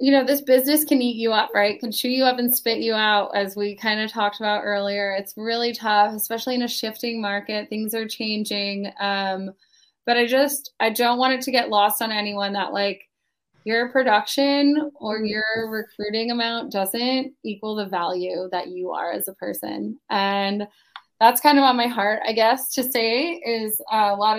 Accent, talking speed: American, 200 wpm